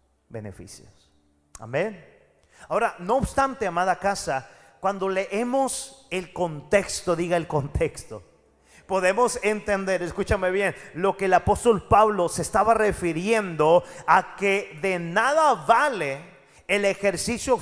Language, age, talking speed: Spanish, 40-59, 110 wpm